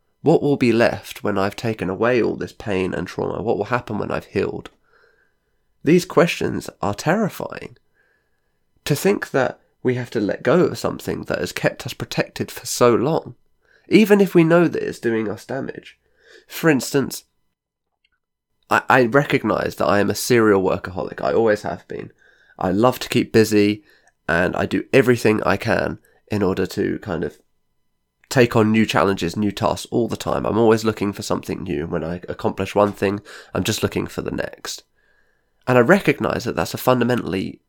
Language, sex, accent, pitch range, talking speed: English, male, British, 100-125 Hz, 180 wpm